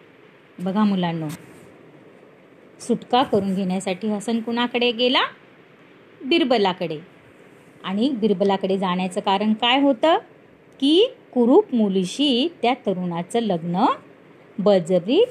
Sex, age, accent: female, 30-49, native